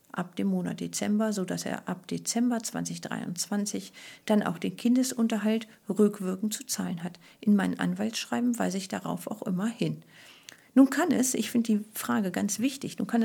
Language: German